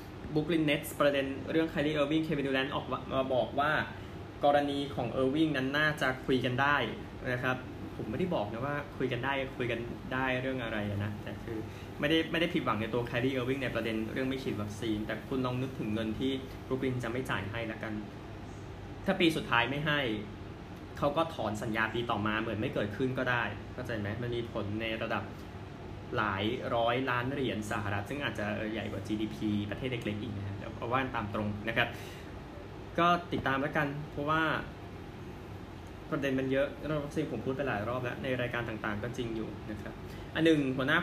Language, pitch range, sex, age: Thai, 105-140 Hz, male, 20-39